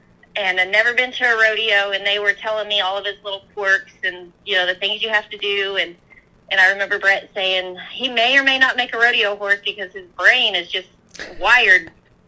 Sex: female